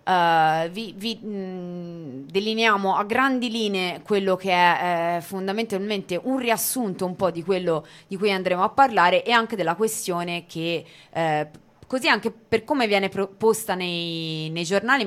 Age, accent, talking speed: 20-39, native, 145 wpm